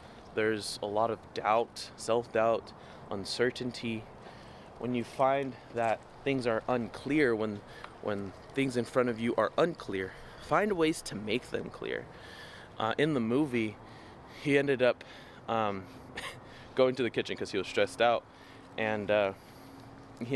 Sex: male